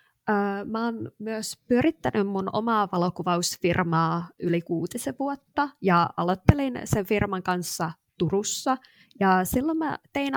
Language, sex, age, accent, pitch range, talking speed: Finnish, female, 20-39, native, 175-215 Hz, 115 wpm